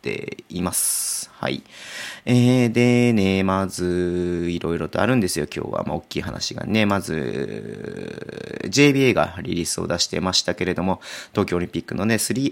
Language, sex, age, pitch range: Japanese, male, 30-49, 95-130 Hz